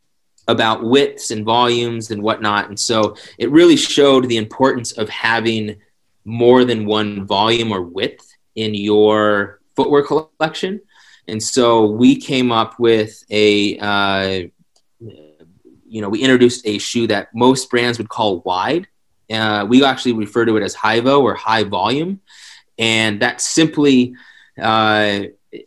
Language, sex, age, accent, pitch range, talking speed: English, male, 30-49, American, 105-120 Hz, 140 wpm